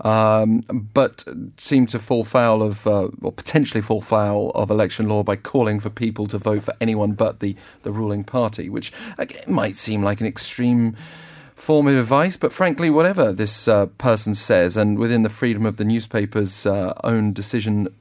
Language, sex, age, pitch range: English, male, 40-59, 100-120 Hz